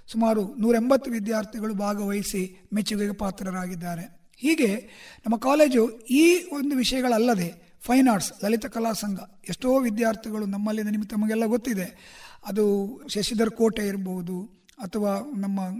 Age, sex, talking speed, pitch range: 50-69, male, 110 wpm, 200-240 Hz